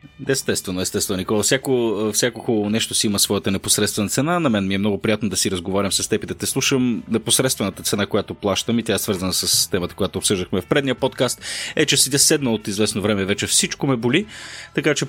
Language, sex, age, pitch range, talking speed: Bulgarian, male, 30-49, 95-130 Hz, 205 wpm